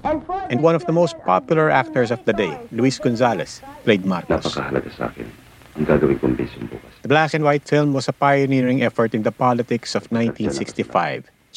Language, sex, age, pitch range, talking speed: Filipino, male, 50-69, 115-150 Hz, 135 wpm